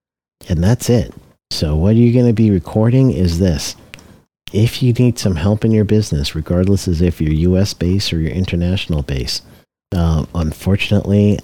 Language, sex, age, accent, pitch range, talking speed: English, male, 50-69, American, 80-100 Hz, 165 wpm